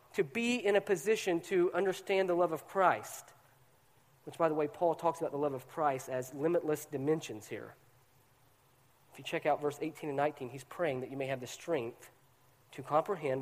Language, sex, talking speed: English, male, 195 wpm